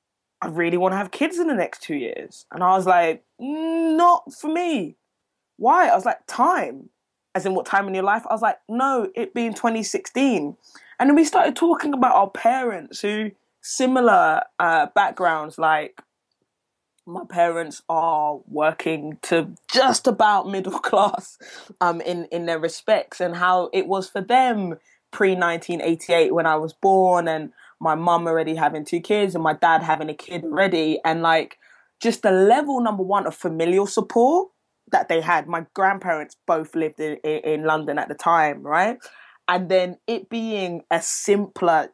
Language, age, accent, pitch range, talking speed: English, 20-39, British, 165-230 Hz, 170 wpm